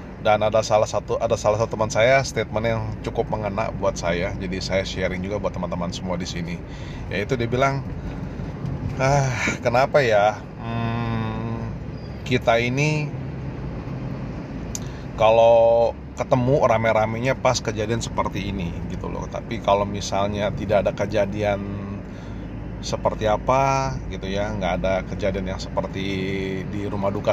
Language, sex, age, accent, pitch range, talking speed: Indonesian, male, 30-49, native, 105-130 Hz, 130 wpm